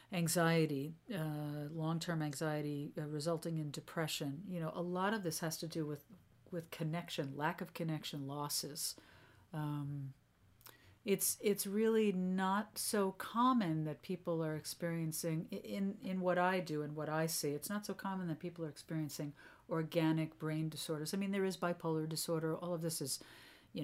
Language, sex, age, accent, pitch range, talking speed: English, female, 50-69, American, 150-185 Hz, 165 wpm